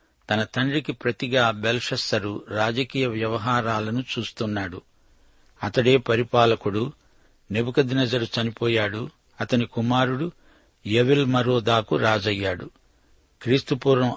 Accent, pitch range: native, 115-130 Hz